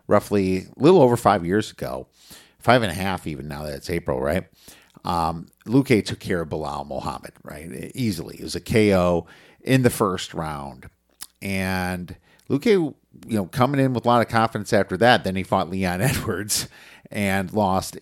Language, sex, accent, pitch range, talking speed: English, male, American, 85-105 Hz, 180 wpm